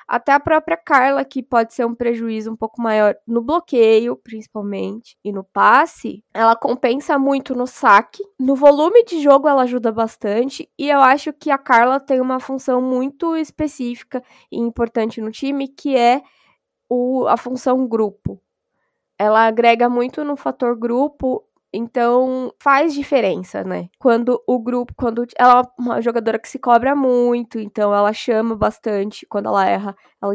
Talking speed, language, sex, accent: 160 wpm, Portuguese, female, Brazilian